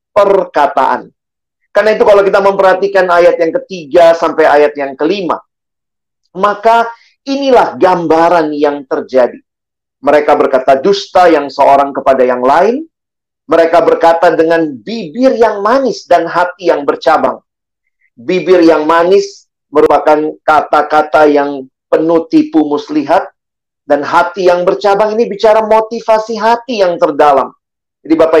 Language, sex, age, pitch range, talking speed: Indonesian, male, 40-59, 150-205 Hz, 120 wpm